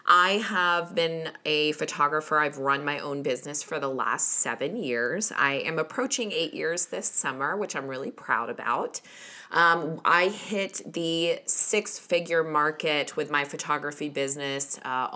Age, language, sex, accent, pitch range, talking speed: 20-39, English, female, American, 140-180 Hz, 150 wpm